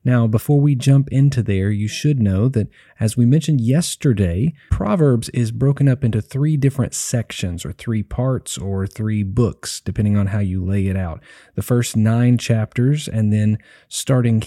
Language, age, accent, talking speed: English, 30-49, American, 175 wpm